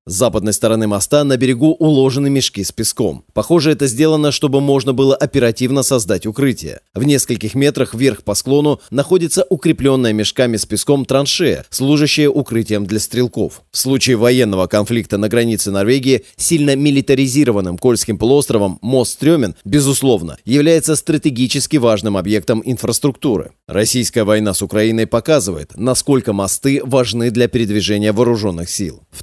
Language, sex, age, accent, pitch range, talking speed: Russian, male, 30-49, native, 110-140 Hz, 140 wpm